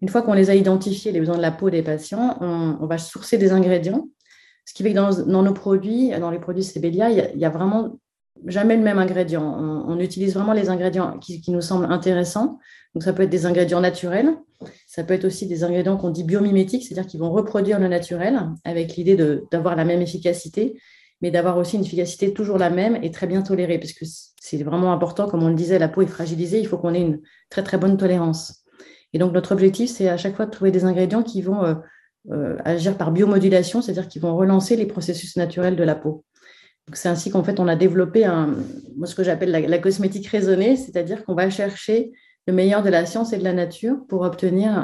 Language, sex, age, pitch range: French, female, 30-49, 175-200 Hz